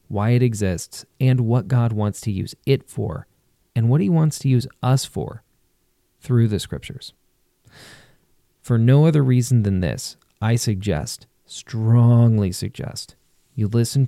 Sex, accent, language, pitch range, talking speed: male, American, English, 120-155 Hz, 145 wpm